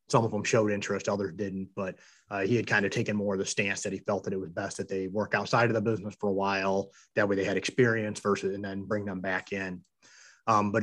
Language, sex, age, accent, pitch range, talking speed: English, male, 30-49, American, 95-110 Hz, 270 wpm